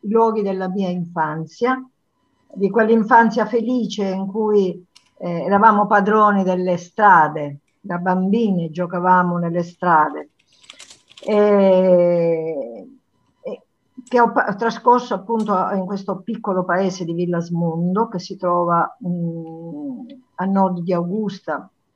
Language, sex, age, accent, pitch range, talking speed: Italian, female, 50-69, native, 170-220 Hz, 110 wpm